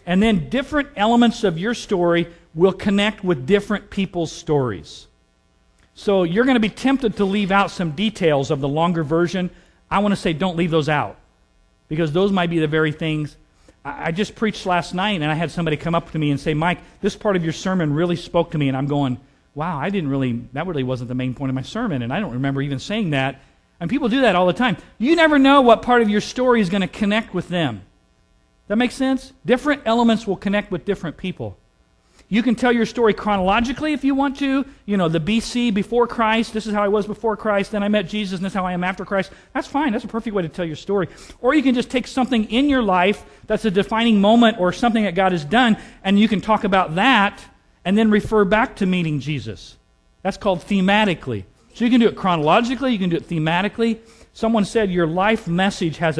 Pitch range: 160-225 Hz